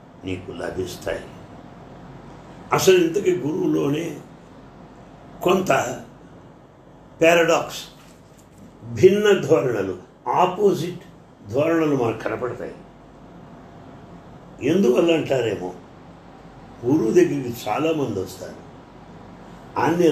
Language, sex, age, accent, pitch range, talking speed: English, male, 60-79, Indian, 125-180 Hz, 65 wpm